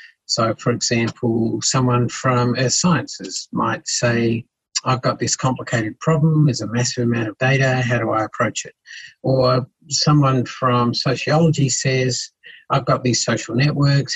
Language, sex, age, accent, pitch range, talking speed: English, male, 50-69, Australian, 120-155 Hz, 150 wpm